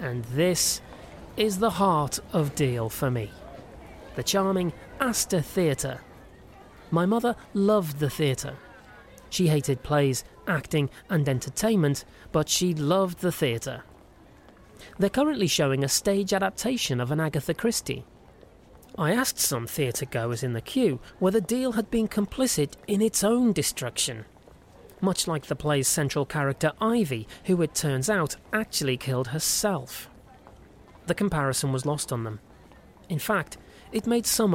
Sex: male